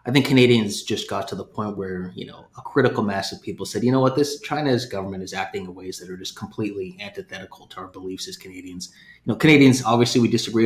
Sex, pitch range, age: male, 95-130 Hz, 30-49